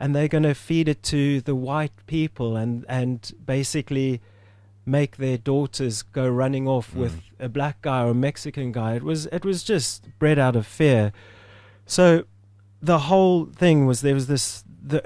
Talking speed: 170 wpm